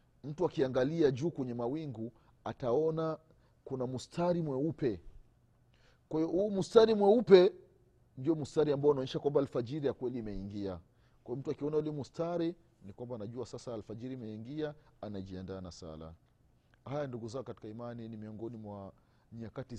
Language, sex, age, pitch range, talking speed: Swahili, male, 40-59, 105-135 Hz, 135 wpm